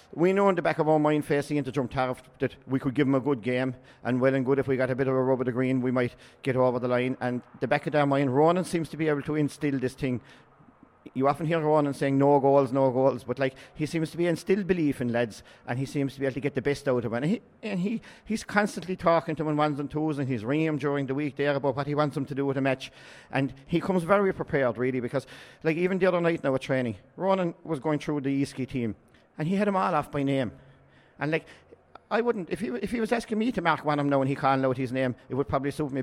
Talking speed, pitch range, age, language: 290 wpm, 130-155 Hz, 40-59, English